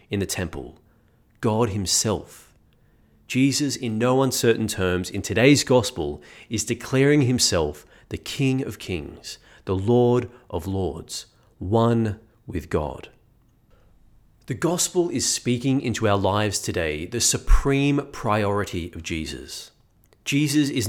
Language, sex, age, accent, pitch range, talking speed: English, male, 30-49, Australian, 100-135 Hz, 120 wpm